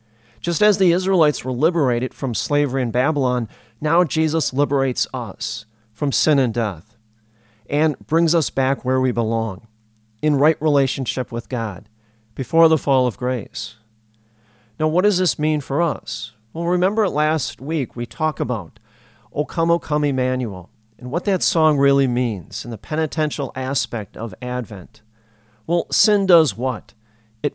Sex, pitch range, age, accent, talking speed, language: male, 110-150 Hz, 40-59, American, 155 wpm, English